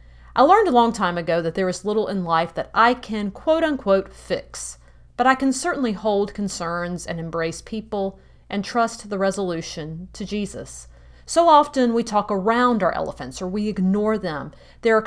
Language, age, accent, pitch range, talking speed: English, 40-59, American, 165-230 Hz, 185 wpm